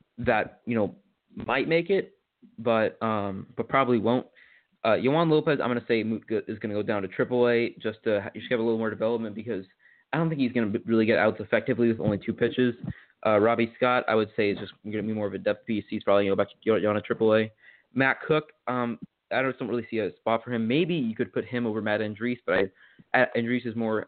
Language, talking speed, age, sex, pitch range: English, 260 wpm, 20-39, male, 110-125 Hz